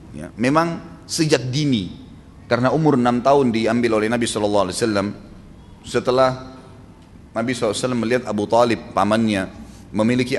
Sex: male